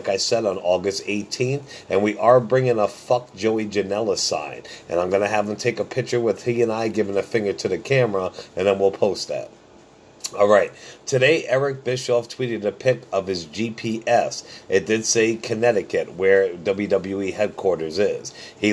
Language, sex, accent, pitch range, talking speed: English, male, American, 105-130 Hz, 185 wpm